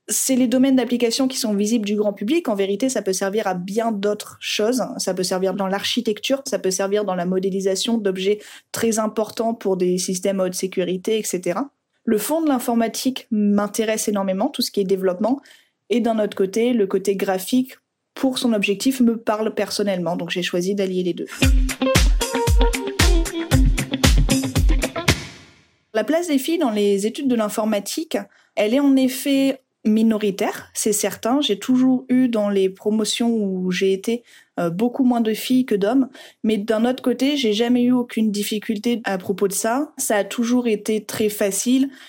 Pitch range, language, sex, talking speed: 200-240 Hz, French, female, 170 wpm